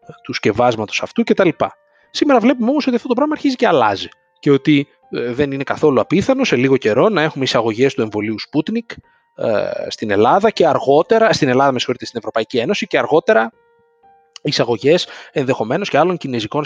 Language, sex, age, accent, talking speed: Greek, male, 30-49, native, 180 wpm